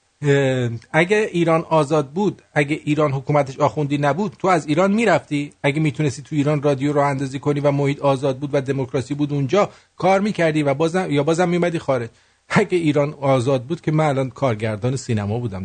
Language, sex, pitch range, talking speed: English, male, 140-180 Hz, 180 wpm